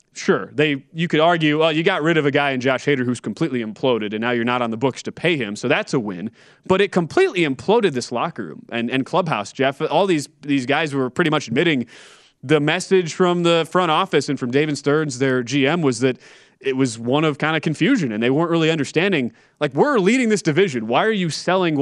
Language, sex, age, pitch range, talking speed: English, male, 20-39, 130-170 Hz, 235 wpm